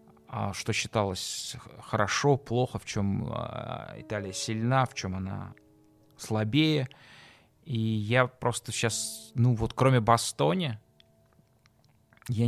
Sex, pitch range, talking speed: male, 105-125 Hz, 100 wpm